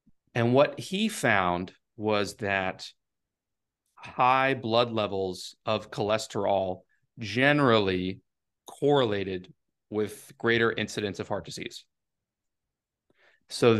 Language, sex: English, male